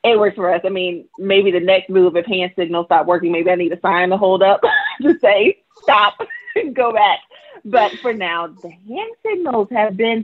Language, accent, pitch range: English, American, 175-240 Hz